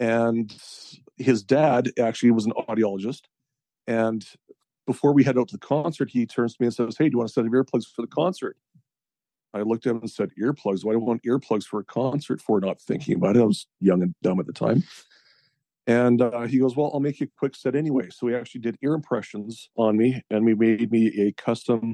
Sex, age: male, 40-59